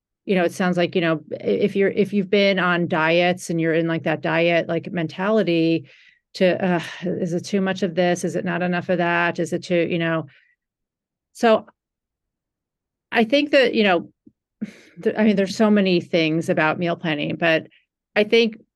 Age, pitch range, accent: 40-59, 170-215 Hz, American